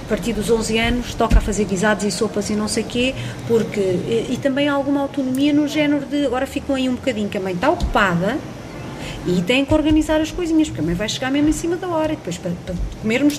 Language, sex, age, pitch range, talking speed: Portuguese, female, 30-49, 200-280 Hz, 245 wpm